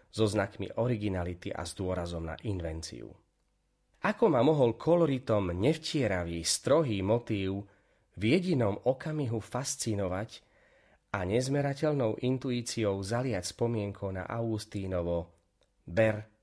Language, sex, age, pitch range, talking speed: Slovak, male, 30-49, 90-125 Hz, 100 wpm